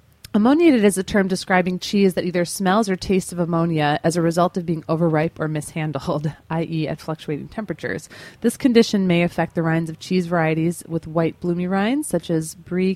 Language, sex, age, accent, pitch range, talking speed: English, female, 30-49, American, 165-200 Hz, 190 wpm